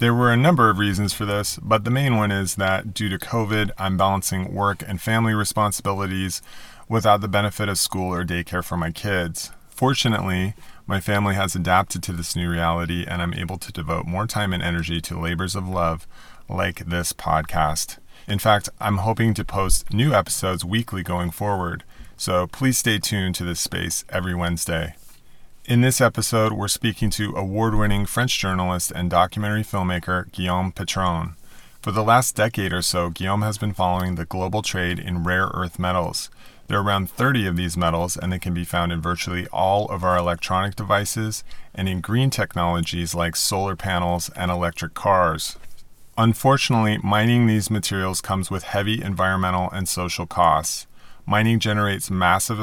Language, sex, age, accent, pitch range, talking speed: English, male, 30-49, American, 90-105 Hz, 175 wpm